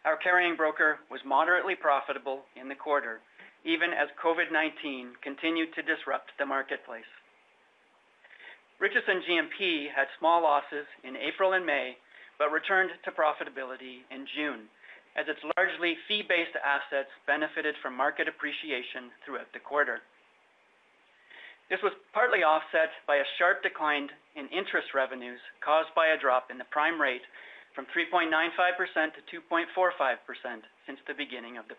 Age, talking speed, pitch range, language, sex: 40-59, 135 wpm, 140-170 Hz, English, male